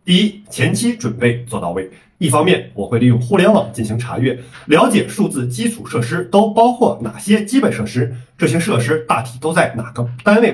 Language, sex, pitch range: Chinese, male, 120-190 Hz